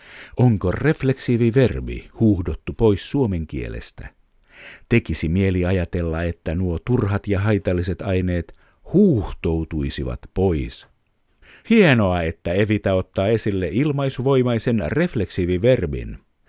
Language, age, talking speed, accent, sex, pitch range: Finnish, 50-69, 95 wpm, native, male, 85-120 Hz